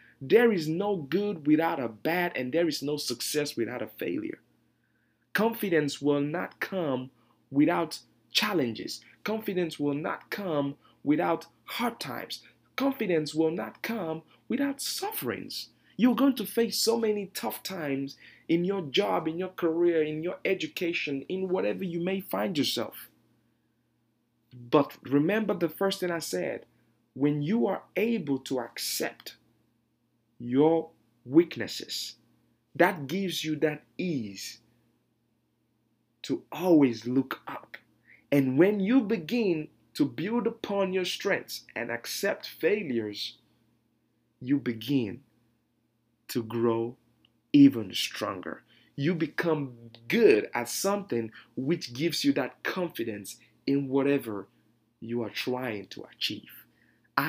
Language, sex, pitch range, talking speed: English, male, 120-185 Hz, 120 wpm